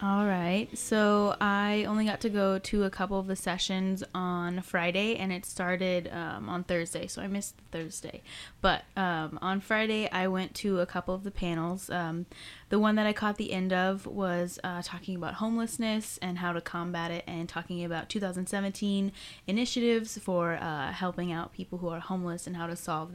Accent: American